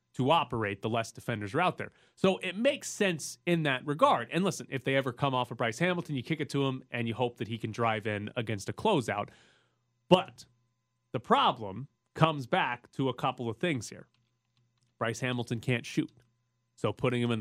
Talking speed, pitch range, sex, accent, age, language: 205 wpm, 110-130 Hz, male, American, 30-49, English